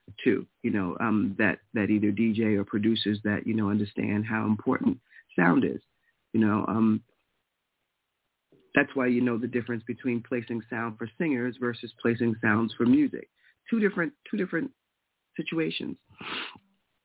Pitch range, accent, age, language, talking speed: 120-175 Hz, American, 40-59, English, 150 wpm